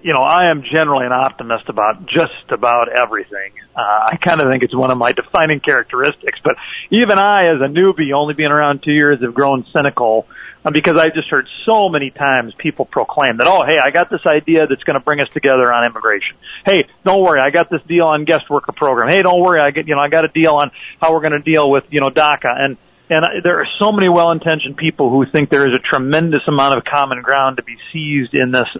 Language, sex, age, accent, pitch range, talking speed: English, male, 40-59, American, 130-160 Hz, 240 wpm